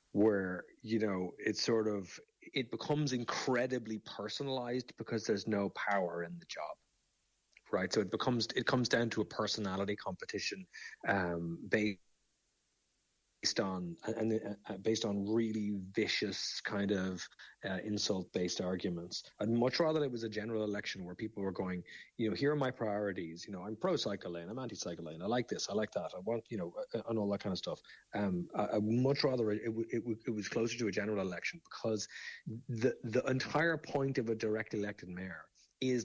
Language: English